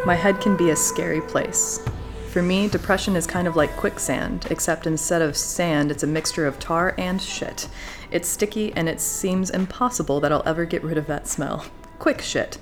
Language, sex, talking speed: English, female, 200 wpm